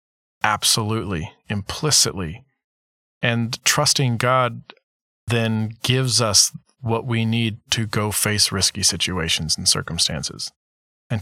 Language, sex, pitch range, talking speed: English, male, 100-120 Hz, 100 wpm